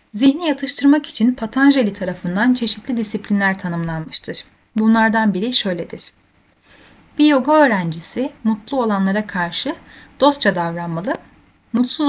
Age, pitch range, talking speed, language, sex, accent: 10-29, 180-245 Hz, 100 wpm, Turkish, female, native